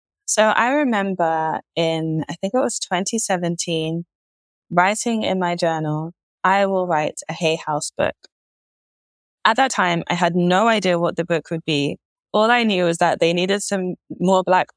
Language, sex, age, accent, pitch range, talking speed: English, female, 20-39, British, 155-190 Hz, 170 wpm